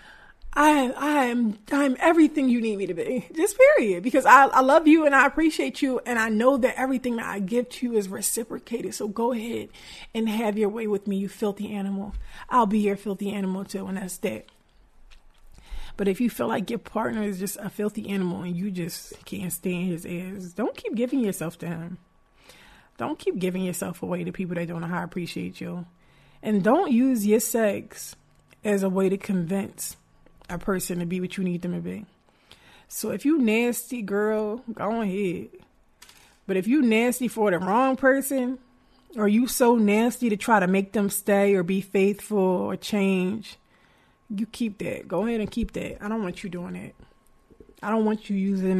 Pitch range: 185-235 Hz